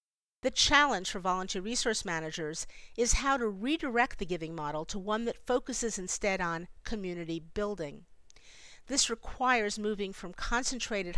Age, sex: 50-69, female